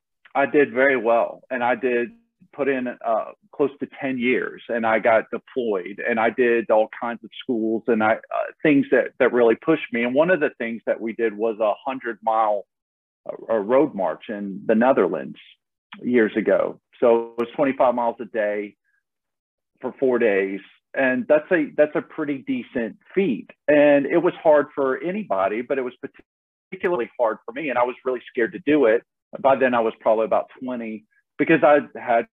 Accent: American